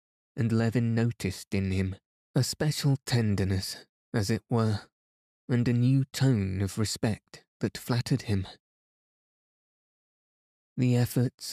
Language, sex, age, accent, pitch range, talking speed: English, male, 20-39, British, 100-115 Hz, 115 wpm